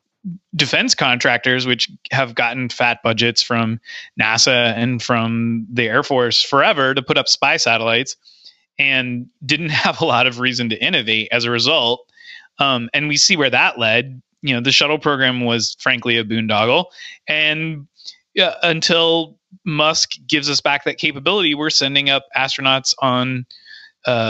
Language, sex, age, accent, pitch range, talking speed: English, male, 30-49, American, 125-160 Hz, 155 wpm